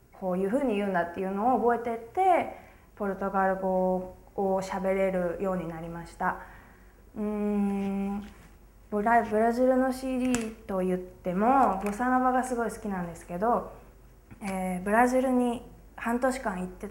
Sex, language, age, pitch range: female, Japanese, 20-39, 185-225 Hz